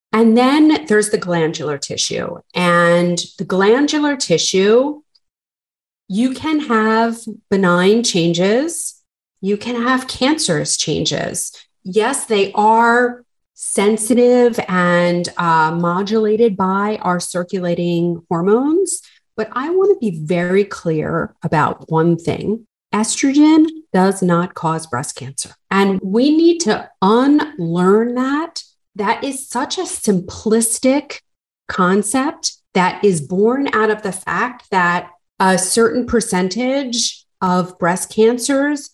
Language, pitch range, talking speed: English, 175-245 Hz, 110 wpm